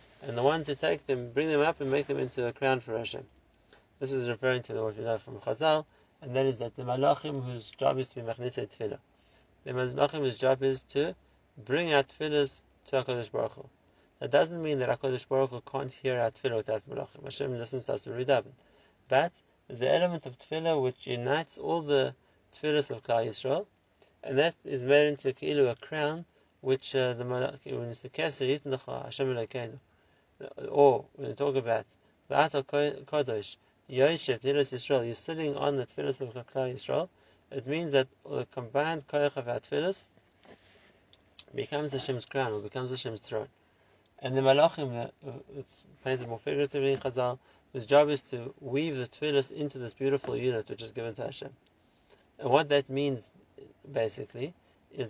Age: 30-49